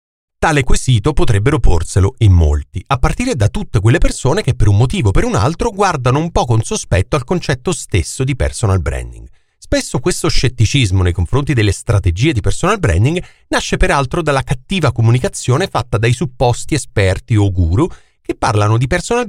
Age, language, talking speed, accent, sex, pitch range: 40-59, Italian, 175 wpm, native, male, 100-160 Hz